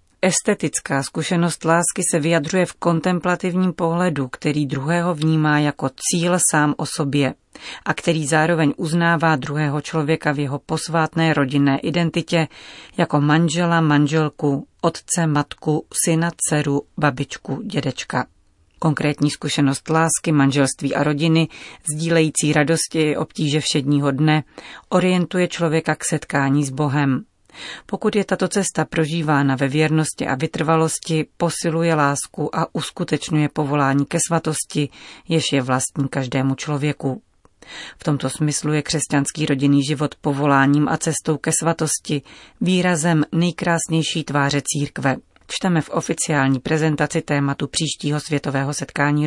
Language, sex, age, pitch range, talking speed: Czech, female, 40-59, 145-165 Hz, 120 wpm